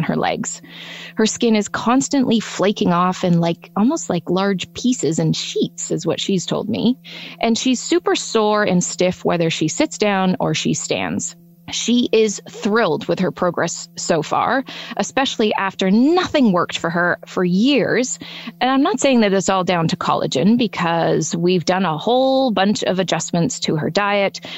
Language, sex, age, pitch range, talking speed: English, female, 20-39, 175-235 Hz, 175 wpm